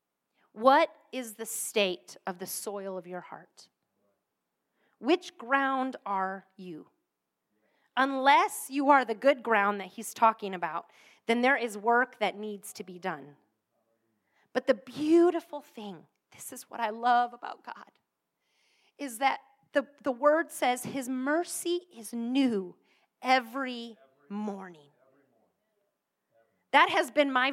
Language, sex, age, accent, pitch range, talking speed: English, female, 30-49, American, 210-300 Hz, 130 wpm